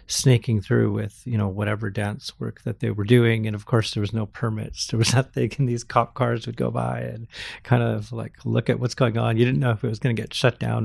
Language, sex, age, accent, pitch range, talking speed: English, male, 40-59, American, 110-125 Hz, 270 wpm